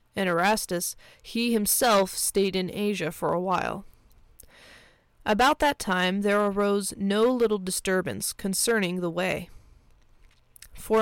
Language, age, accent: English, 20-39, American